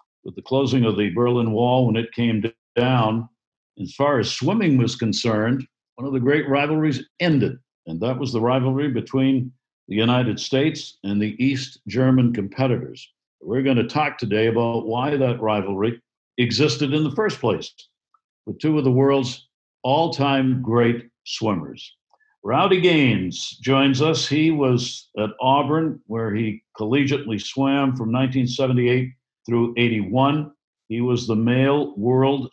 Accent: American